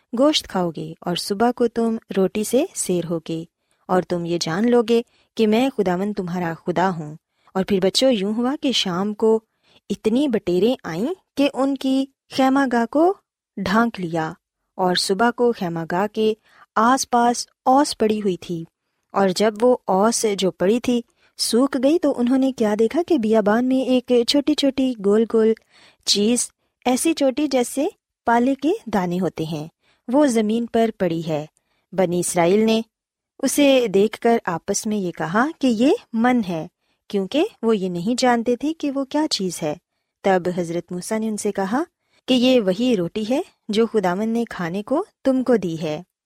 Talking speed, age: 175 wpm, 20-39